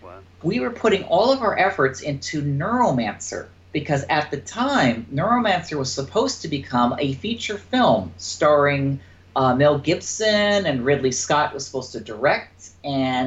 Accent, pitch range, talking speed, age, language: American, 120-165 Hz, 150 wpm, 40-59, English